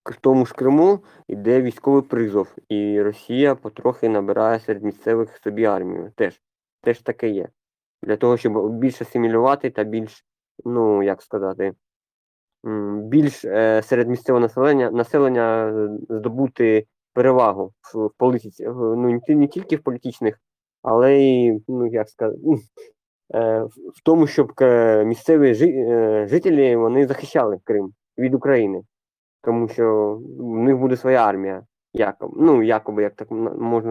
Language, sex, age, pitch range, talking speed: Ukrainian, male, 20-39, 110-135 Hz, 135 wpm